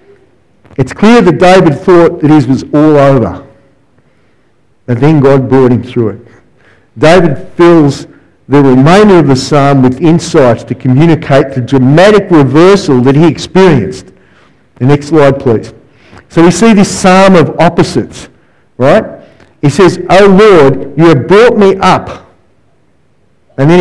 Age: 50-69